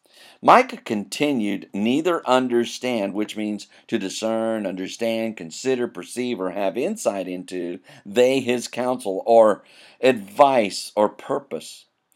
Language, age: English, 50-69